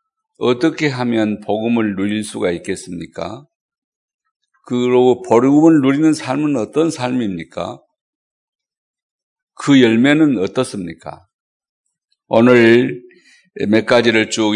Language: Korean